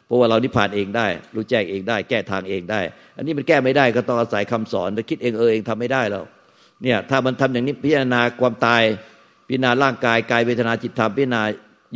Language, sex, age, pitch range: Thai, male, 60-79, 110-130 Hz